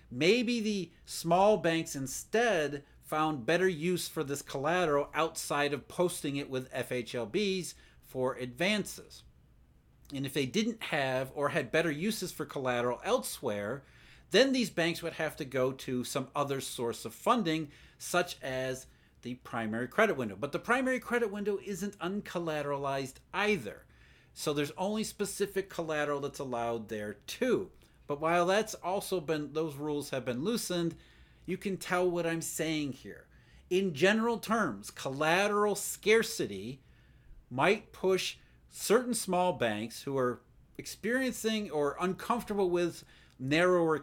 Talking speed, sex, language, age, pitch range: 140 wpm, male, English, 40-59, 130-185 Hz